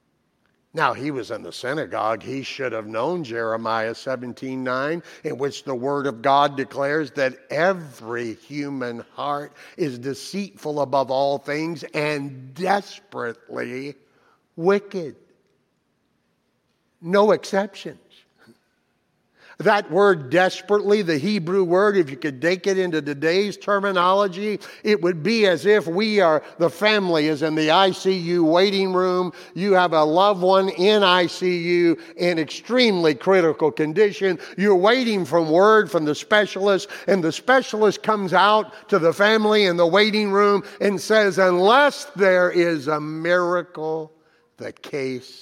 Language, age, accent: English, 60-79, American